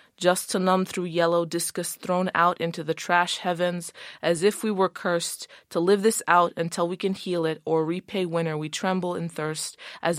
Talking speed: 200 wpm